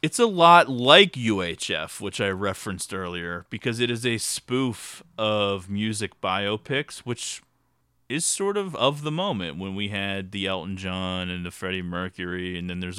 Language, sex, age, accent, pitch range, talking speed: English, male, 30-49, American, 90-125 Hz, 170 wpm